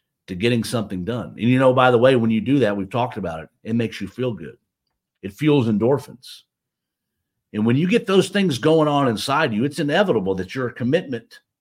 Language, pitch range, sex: English, 95-135 Hz, male